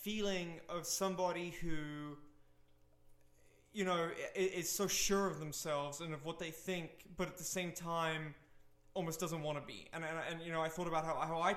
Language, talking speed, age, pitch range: English, 195 wpm, 20-39, 155-175 Hz